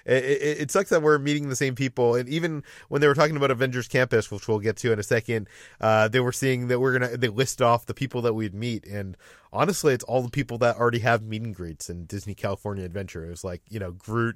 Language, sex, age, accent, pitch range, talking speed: English, male, 30-49, American, 110-130 Hz, 265 wpm